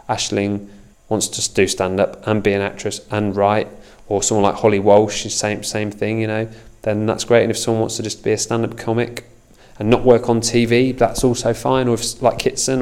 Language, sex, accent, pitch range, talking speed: English, male, British, 100-115 Hz, 220 wpm